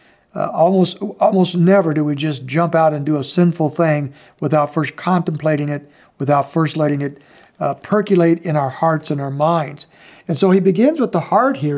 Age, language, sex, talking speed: 60-79, English, male, 195 wpm